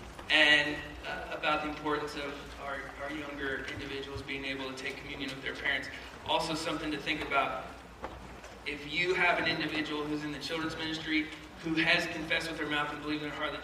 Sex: male